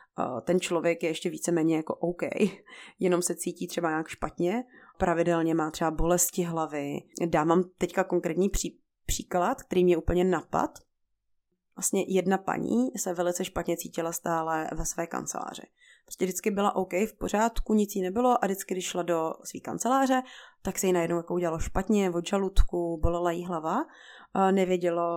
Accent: native